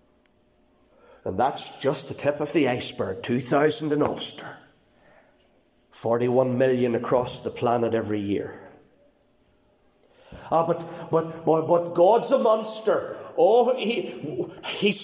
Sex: male